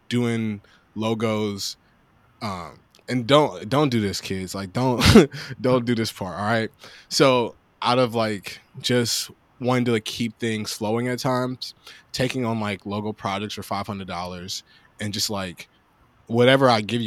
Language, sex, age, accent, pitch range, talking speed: English, male, 20-39, American, 95-115 Hz, 150 wpm